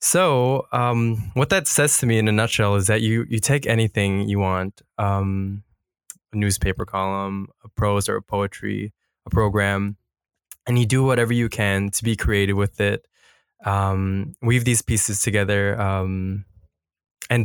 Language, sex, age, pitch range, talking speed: English, male, 20-39, 100-120 Hz, 155 wpm